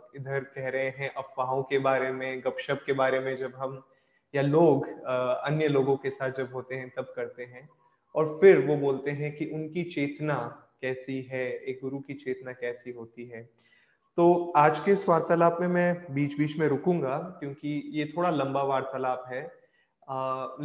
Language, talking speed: Hindi, 175 wpm